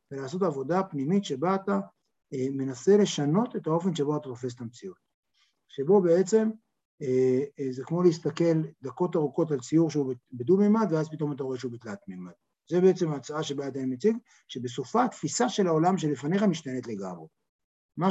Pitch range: 145-195 Hz